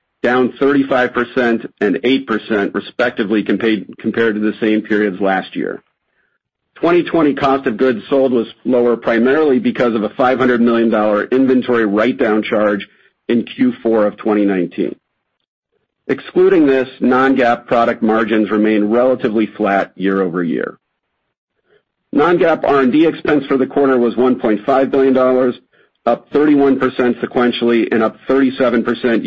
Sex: male